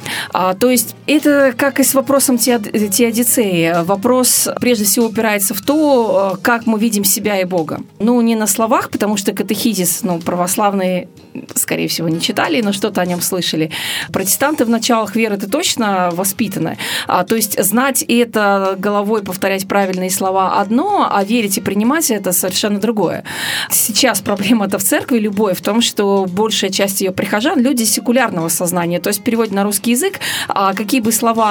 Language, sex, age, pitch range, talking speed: Russian, female, 30-49, 195-245 Hz, 170 wpm